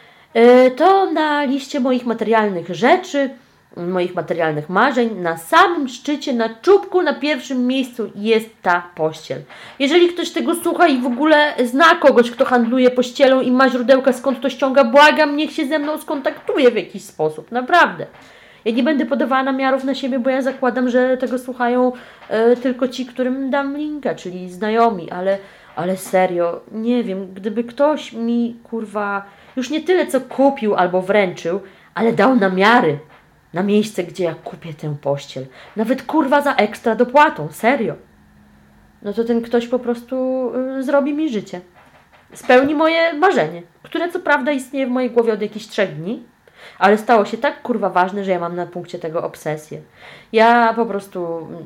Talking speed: 165 wpm